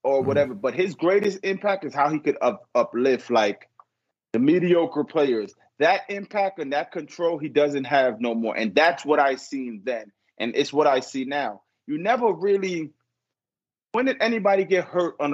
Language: English